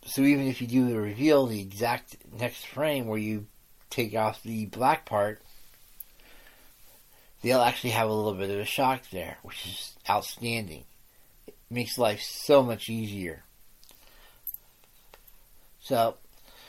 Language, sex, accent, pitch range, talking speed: English, male, American, 105-125 Hz, 135 wpm